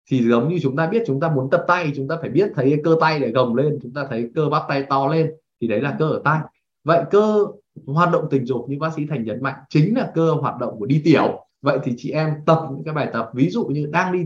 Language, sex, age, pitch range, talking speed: Vietnamese, male, 20-39, 135-175 Hz, 290 wpm